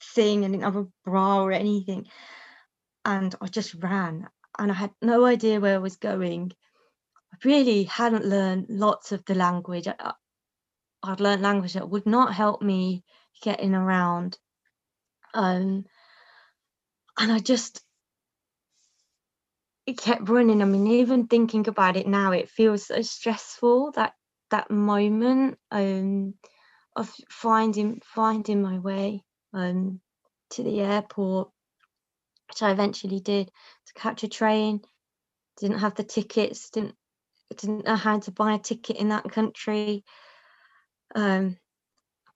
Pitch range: 195-220 Hz